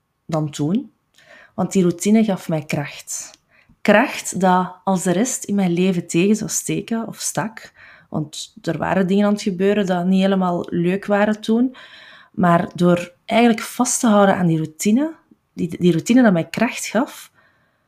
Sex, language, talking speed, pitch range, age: female, Dutch, 170 wpm, 170-215 Hz, 20-39